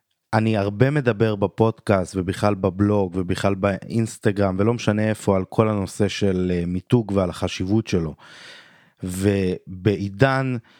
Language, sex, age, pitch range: Hebrew, male, 30-49, 95-115 Hz